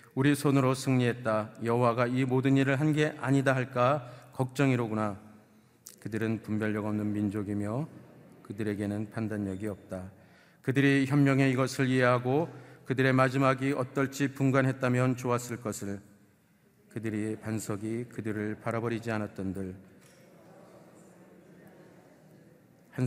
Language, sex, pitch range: Korean, male, 105-130 Hz